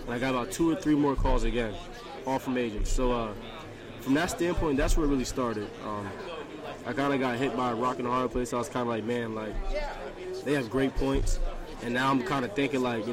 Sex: male